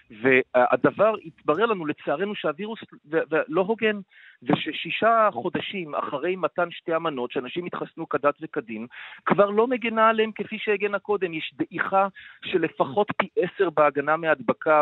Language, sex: English, male